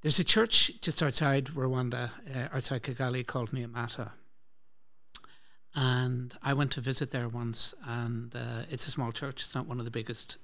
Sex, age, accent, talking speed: male, 60-79, Irish, 170 wpm